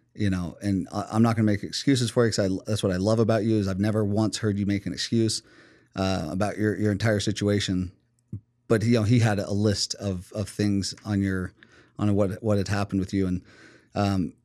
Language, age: English, 30-49